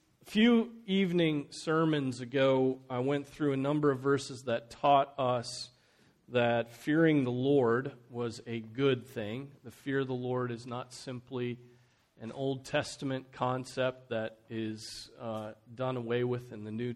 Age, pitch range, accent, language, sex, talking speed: 40-59, 120-145 Hz, American, English, male, 155 wpm